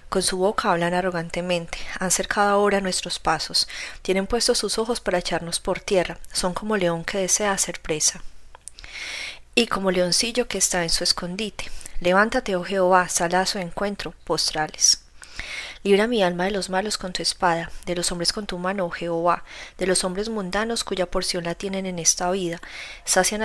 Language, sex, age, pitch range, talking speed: Spanish, female, 30-49, 175-200 Hz, 180 wpm